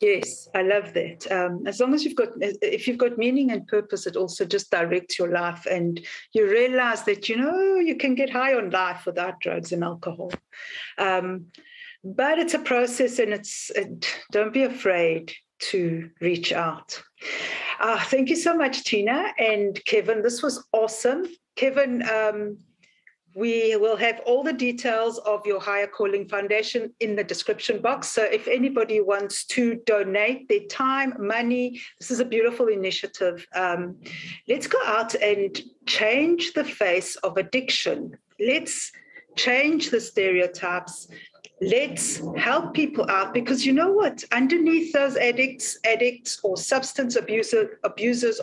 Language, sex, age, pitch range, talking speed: English, female, 60-79, 200-310 Hz, 155 wpm